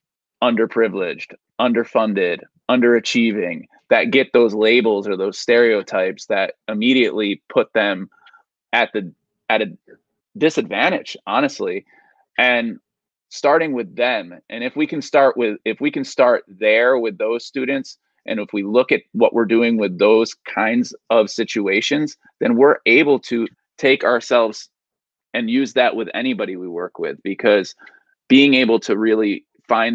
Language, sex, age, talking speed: English, male, 20-39, 140 wpm